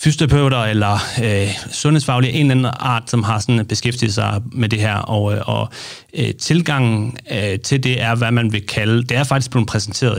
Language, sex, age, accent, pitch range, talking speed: Danish, male, 30-49, native, 105-130 Hz, 195 wpm